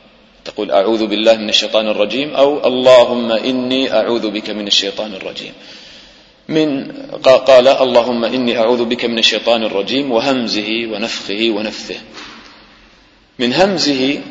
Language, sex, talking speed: English, male, 115 wpm